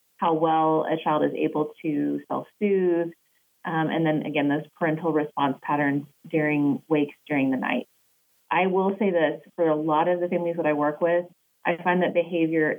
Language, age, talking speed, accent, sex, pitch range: English, 30-49, 180 wpm, American, female, 150-180 Hz